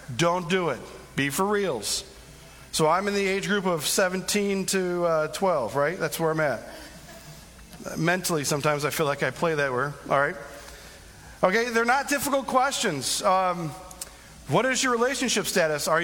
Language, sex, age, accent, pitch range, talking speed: English, male, 40-59, American, 160-215 Hz, 170 wpm